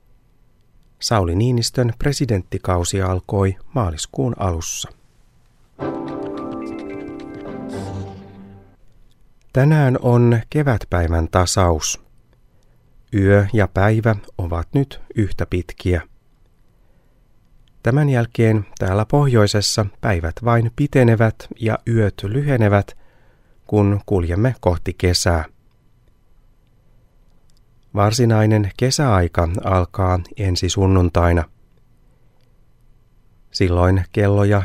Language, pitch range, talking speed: Finnish, 95-120 Hz, 65 wpm